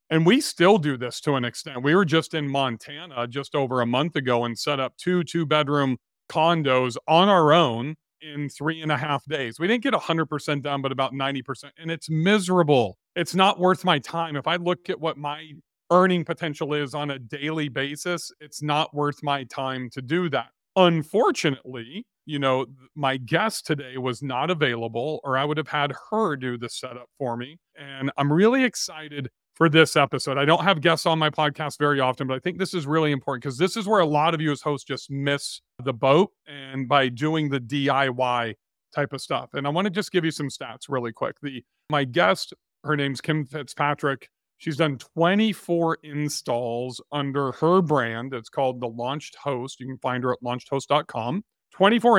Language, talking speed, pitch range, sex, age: English, 200 wpm, 135-165 Hz, male, 40-59